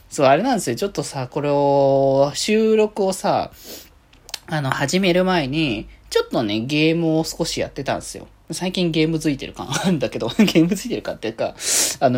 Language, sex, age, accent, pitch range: Japanese, male, 20-39, native, 135-200 Hz